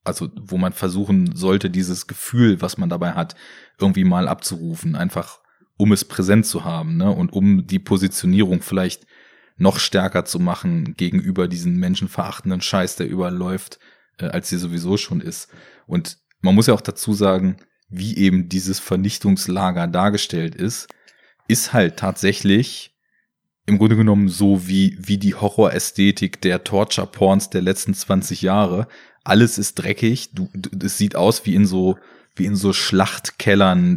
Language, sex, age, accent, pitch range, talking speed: German, male, 30-49, German, 95-110 Hz, 150 wpm